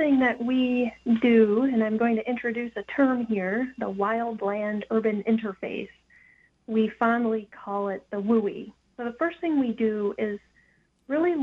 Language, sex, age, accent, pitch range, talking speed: English, female, 30-49, American, 200-245 Hz, 150 wpm